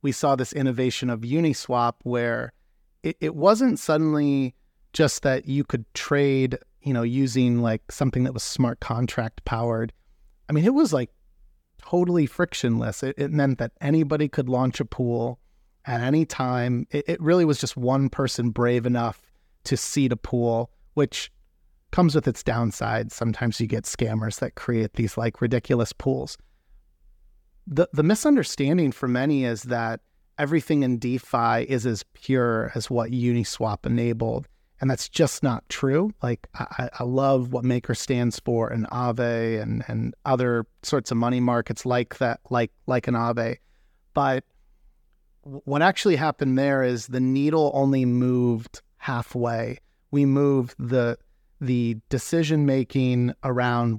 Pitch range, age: 115-140 Hz, 30-49